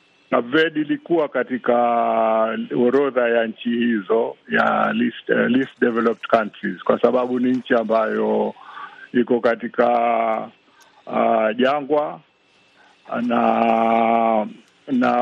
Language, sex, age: Swahili, male, 50-69